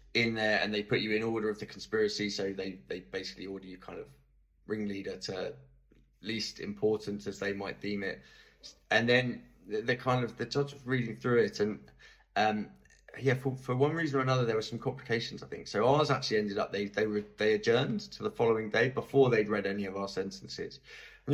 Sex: male